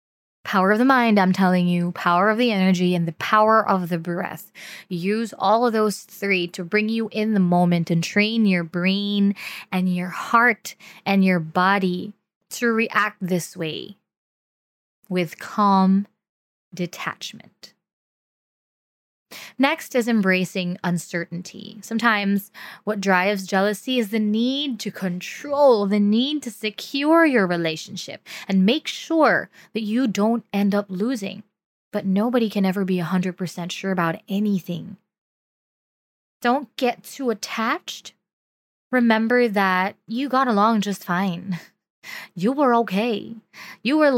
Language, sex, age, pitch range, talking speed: English, female, 20-39, 185-225 Hz, 135 wpm